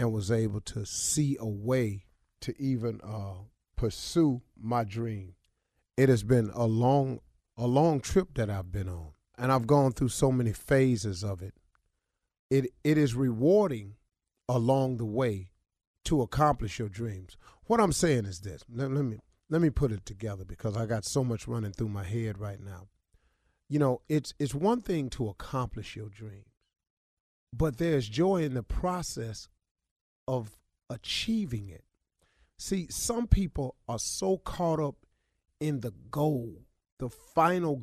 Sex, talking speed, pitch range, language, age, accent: male, 160 wpm, 105-155 Hz, English, 40-59, American